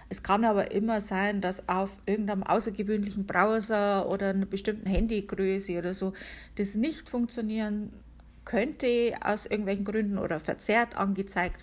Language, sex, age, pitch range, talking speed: German, female, 50-69, 175-215 Hz, 135 wpm